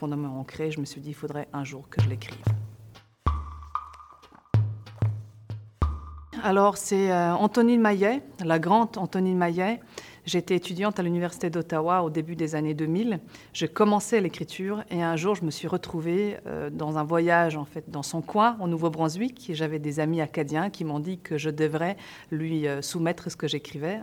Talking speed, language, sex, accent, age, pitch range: 165 wpm, French, female, French, 40-59, 145-175 Hz